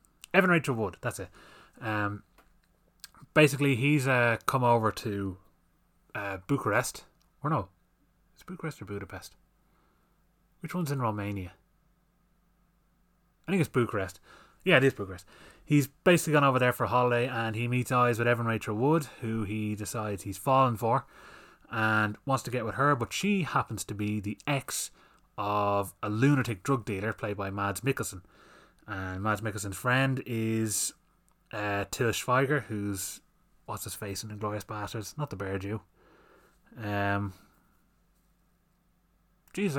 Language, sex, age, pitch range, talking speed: English, male, 20-39, 105-145 Hz, 145 wpm